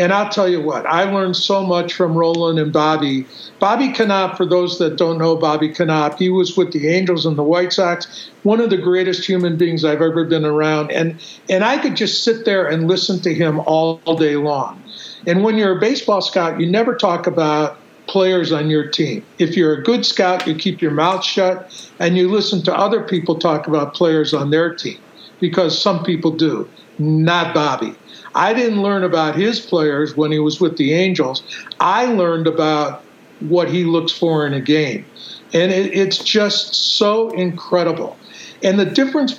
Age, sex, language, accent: 50-69, male, English, American